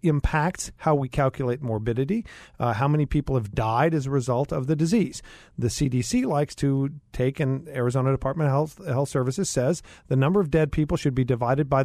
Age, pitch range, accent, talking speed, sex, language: 40-59, 125-165 Hz, American, 200 wpm, male, English